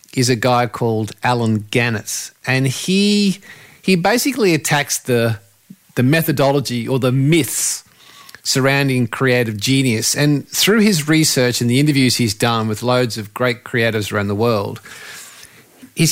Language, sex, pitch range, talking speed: English, male, 120-160 Hz, 140 wpm